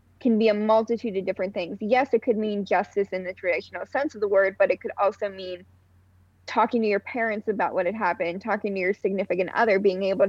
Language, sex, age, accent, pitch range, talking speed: English, female, 10-29, American, 190-235 Hz, 225 wpm